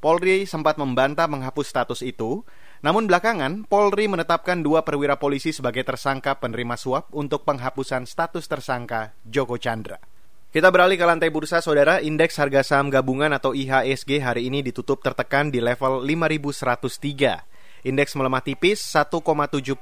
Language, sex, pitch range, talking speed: Indonesian, male, 130-165 Hz, 140 wpm